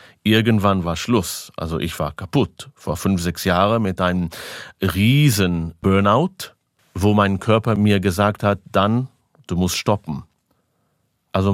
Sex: male